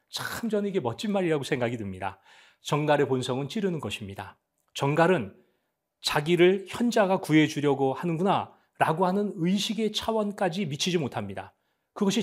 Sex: male